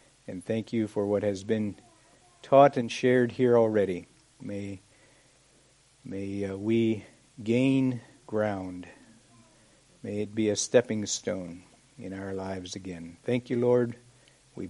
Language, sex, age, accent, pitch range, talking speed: English, male, 60-79, American, 105-130 Hz, 130 wpm